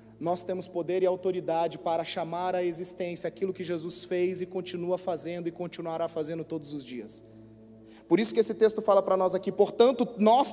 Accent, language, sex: Brazilian, Portuguese, male